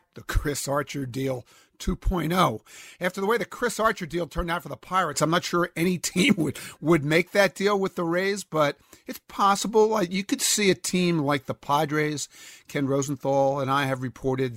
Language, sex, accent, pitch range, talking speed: English, male, American, 130-170 Hz, 200 wpm